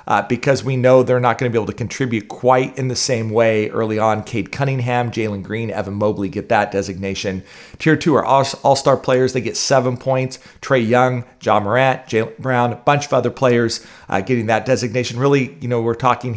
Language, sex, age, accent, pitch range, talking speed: English, male, 40-59, American, 105-130 Hz, 210 wpm